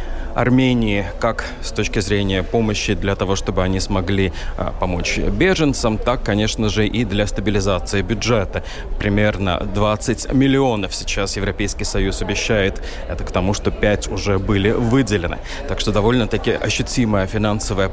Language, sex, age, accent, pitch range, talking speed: Russian, male, 20-39, native, 95-110 Hz, 135 wpm